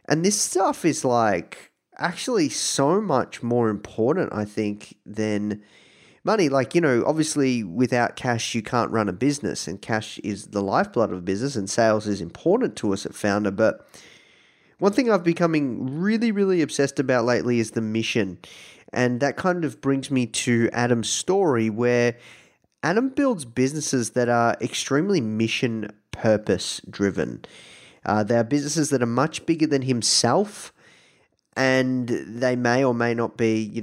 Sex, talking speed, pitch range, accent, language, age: male, 160 wpm, 110-135 Hz, Australian, English, 20-39